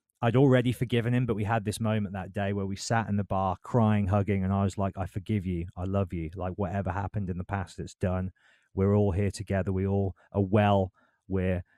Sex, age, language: male, 30-49, English